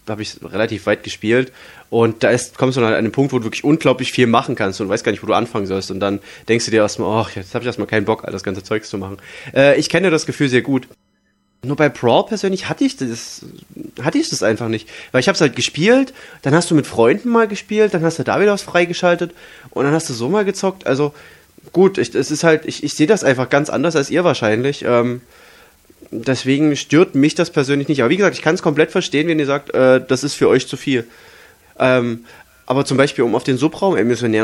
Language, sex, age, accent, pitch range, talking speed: German, male, 20-39, German, 120-155 Hz, 245 wpm